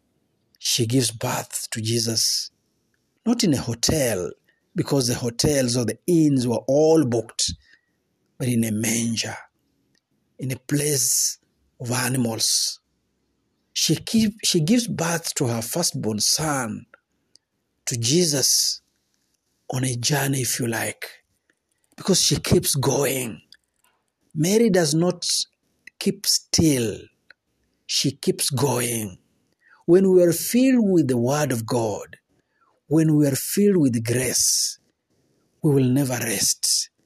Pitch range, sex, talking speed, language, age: 125-180 Hz, male, 120 wpm, Swahili, 50-69